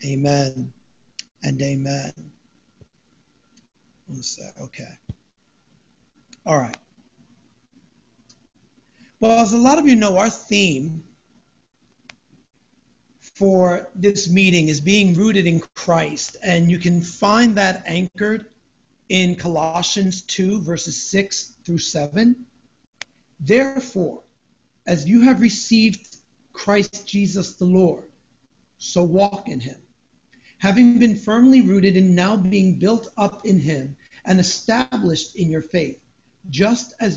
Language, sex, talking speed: English, male, 110 wpm